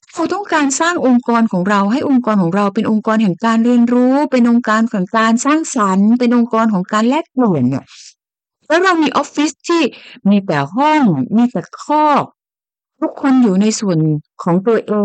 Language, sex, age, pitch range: Thai, female, 60-79, 175-240 Hz